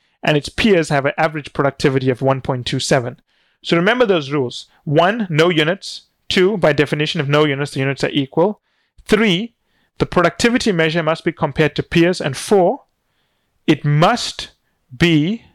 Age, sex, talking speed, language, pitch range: 30-49, male, 155 wpm, English, 145-185 Hz